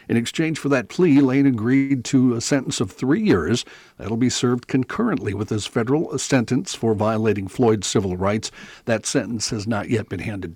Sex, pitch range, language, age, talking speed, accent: male, 110-140 Hz, English, 60-79, 195 wpm, American